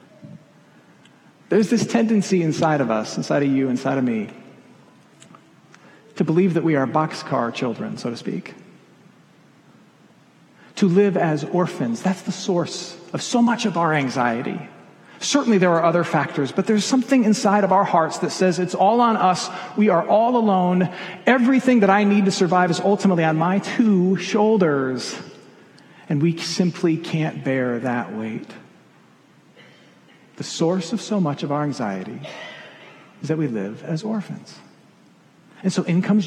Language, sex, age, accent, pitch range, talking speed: English, male, 40-59, American, 155-205 Hz, 155 wpm